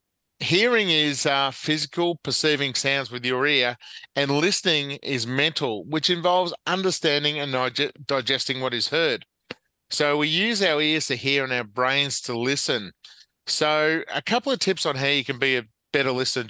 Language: English